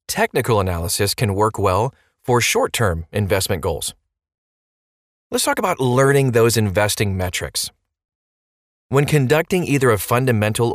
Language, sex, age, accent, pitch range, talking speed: English, male, 30-49, American, 100-130 Hz, 115 wpm